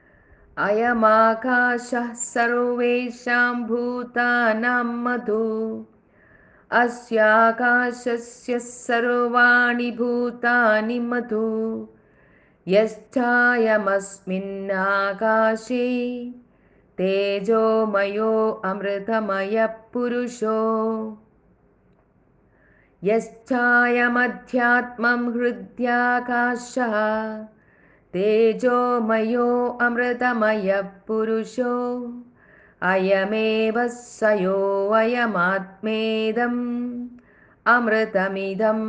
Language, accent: Malayalam, native